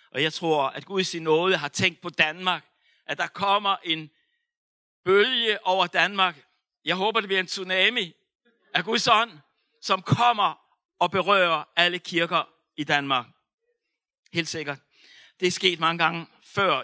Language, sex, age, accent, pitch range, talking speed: Danish, male, 60-79, native, 155-205 Hz, 155 wpm